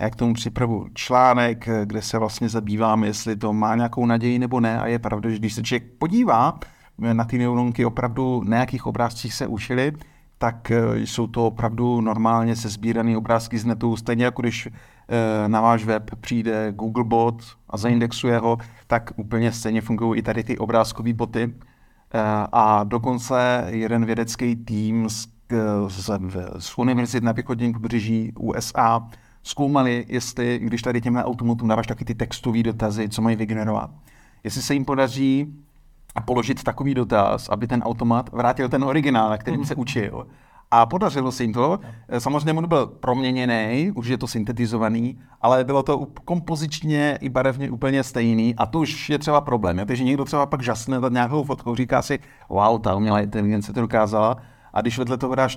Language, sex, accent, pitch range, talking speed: Czech, male, native, 115-125 Hz, 165 wpm